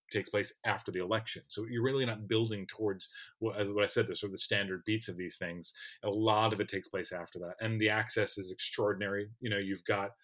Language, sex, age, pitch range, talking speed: English, male, 30-49, 100-115 Hz, 245 wpm